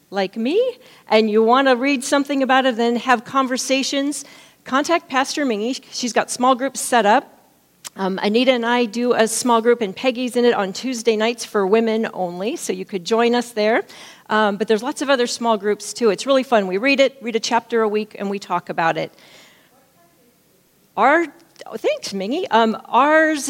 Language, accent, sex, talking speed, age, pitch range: English, American, female, 195 wpm, 40-59, 205-265 Hz